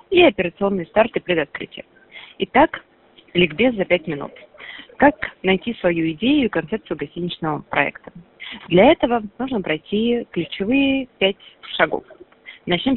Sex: female